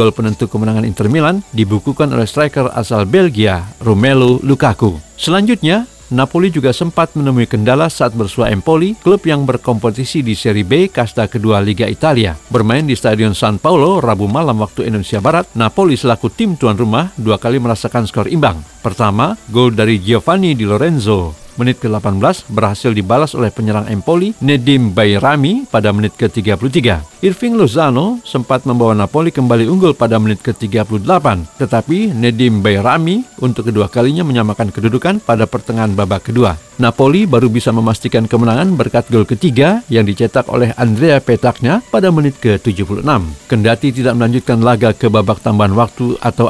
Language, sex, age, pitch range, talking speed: Indonesian, male, 50-69, 110-145 Hz, 150 wpm